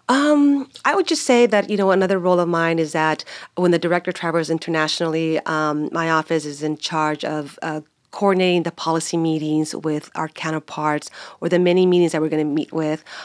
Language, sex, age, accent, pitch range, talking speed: English, female, 40-59, American, 160-180 Hz, 200 wpm